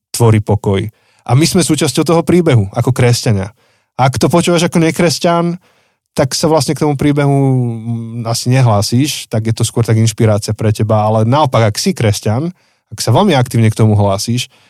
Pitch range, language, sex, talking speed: 105-125 Hz, Slovak, male, 175 wpm